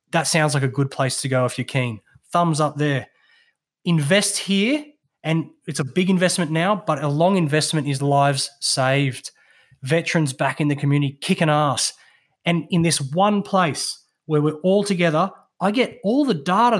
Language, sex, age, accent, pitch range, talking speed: English, male, 20-39, Australian, 155-200 Hz, 180 wpm